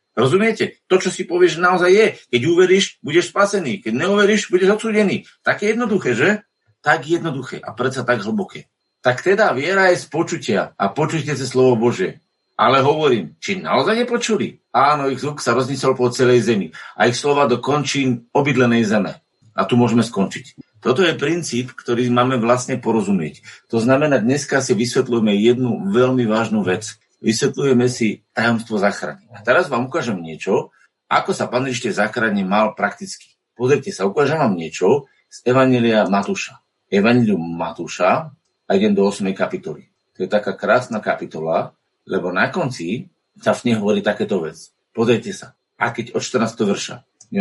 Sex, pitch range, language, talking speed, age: male, 115-180 Hz, Slovak, 160 wpm, 50-69